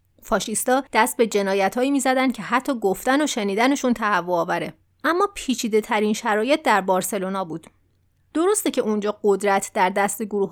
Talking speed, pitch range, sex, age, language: 150 wpm, 195-270 Hz, female, 30-49, Persian